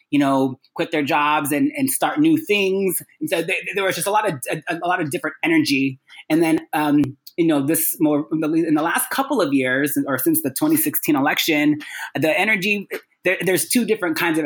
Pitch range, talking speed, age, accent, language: 150-215 Hz, 210 wpm, 20-39, American, English